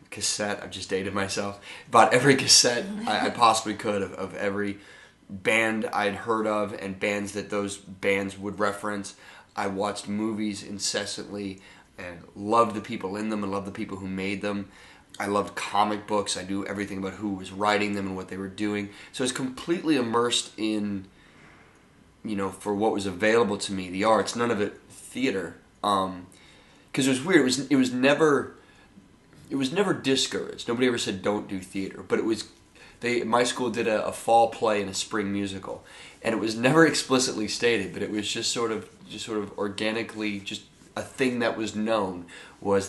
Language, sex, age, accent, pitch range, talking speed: English, male, 20-39, American, 100-120 Hz, 195 wpm